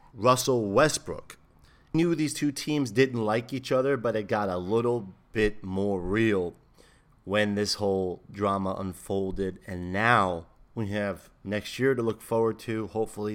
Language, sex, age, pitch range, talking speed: English, male, 30-49, 105-130 Hz, 155 wpm